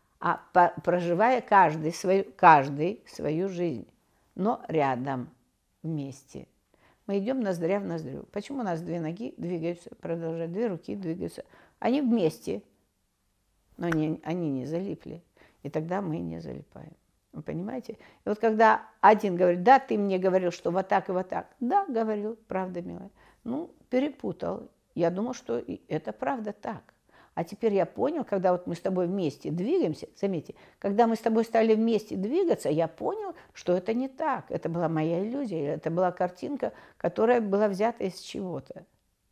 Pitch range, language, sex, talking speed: 160-225 Hz, Russian, female, 155 wpm